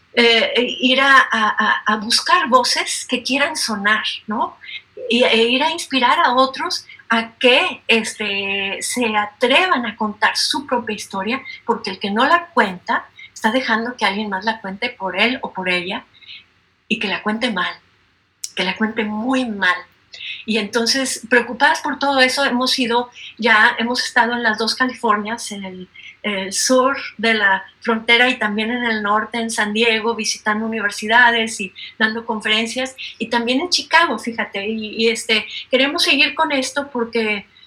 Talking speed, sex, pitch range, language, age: 165 wpm, female, 215-265 Hz, Spanish, 40-59